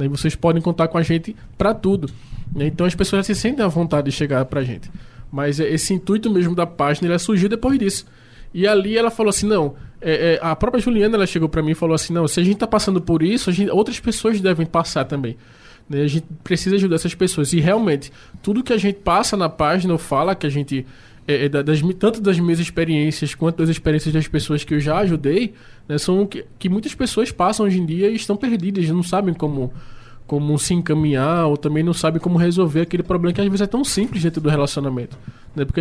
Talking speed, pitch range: 235 wpm, 145-185 Hz